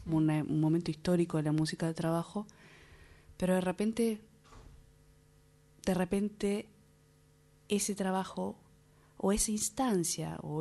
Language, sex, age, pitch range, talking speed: Spanish, female, 20-39, 155-180 Hz, 105 wpm